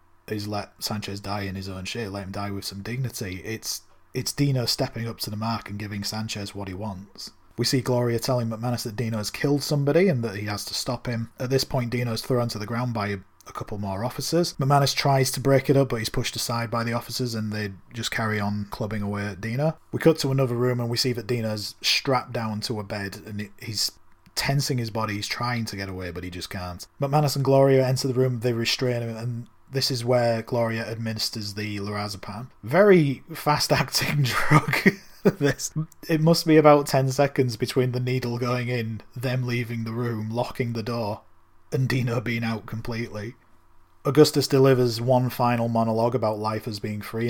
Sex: male